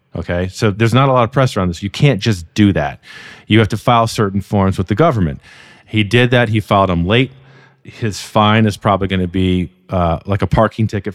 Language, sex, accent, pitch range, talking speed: English, male, American, 95-120 Hz, 230 wpm